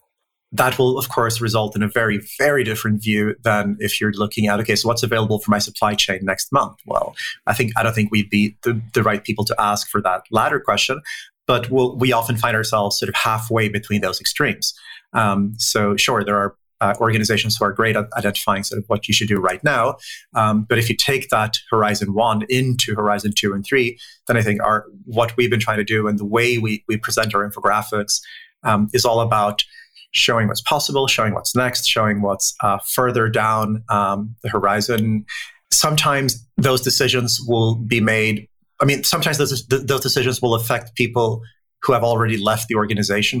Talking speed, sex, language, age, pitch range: 200 wpm, male, English, 30-49, 105-120 Hz